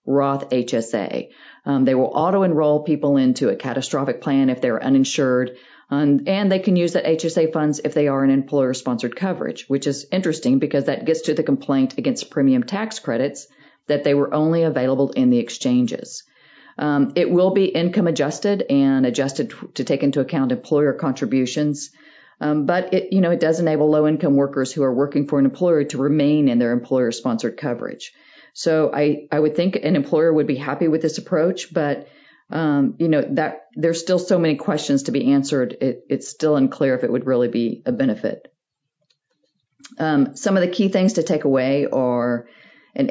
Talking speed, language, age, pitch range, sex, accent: 185 wpm, English, 40-59, 135-180 Hz, female, American